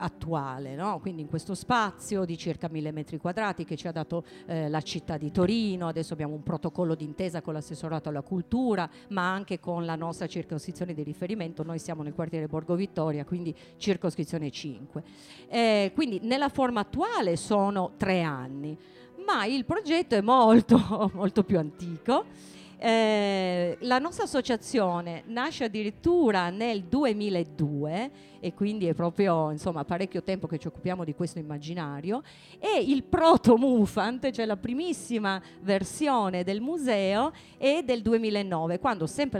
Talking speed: 150 wpm